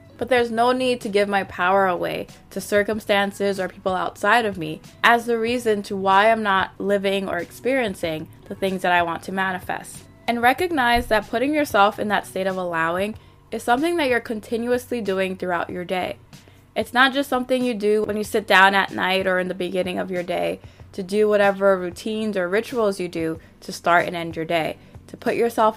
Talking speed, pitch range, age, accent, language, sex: 205 wpm, 185-230 Hz, 20-39, American, English, female